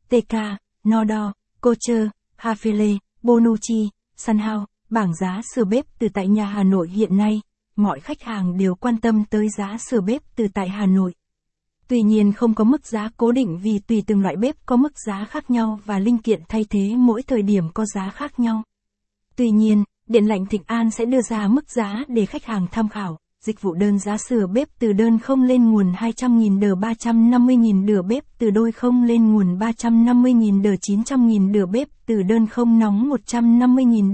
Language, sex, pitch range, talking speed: Vietnamese, female, 205-240 Hz, 190 wpm